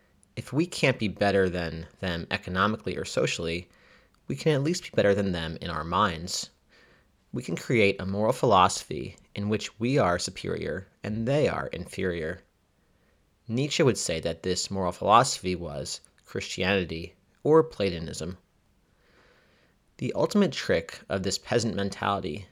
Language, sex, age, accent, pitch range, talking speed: English, male, 30-49, American, 90-125 Hz, 145 wpm